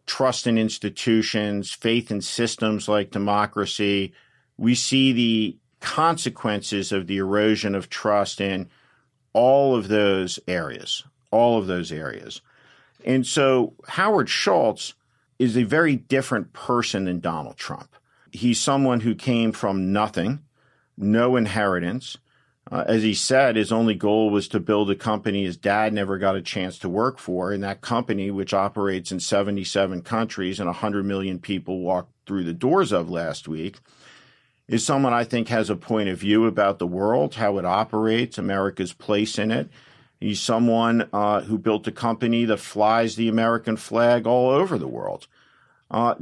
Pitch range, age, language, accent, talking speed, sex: 100-120 Hz, 50-69, English, American, 160 wpm, male